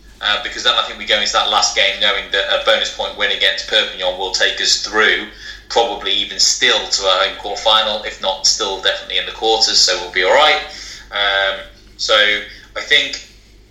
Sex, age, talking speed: male, 20-39, 195 wpm